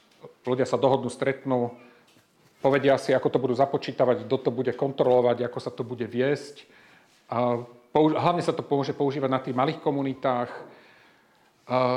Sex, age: male, 40-59